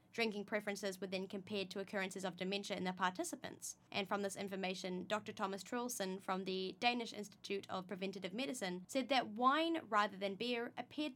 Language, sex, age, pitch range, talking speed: English, female, 10-29, 200-265 Hz, 175 wpm